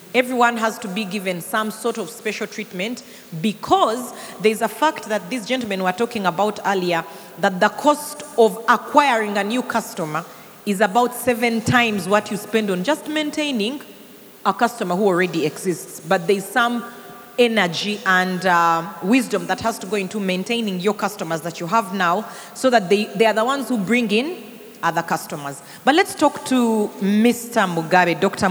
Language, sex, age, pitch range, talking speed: English, female, 30-49, 180-225 Hz, 175 wpm